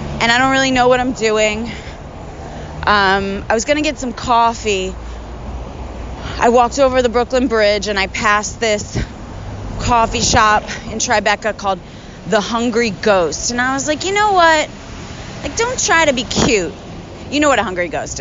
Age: 30-49